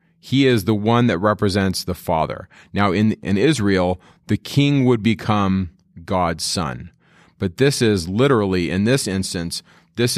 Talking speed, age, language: 155 wpm, 30-49, English